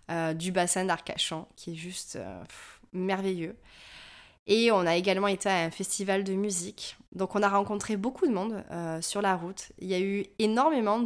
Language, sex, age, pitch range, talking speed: French, female, 20-39, 180-220 Hz, 195 wpm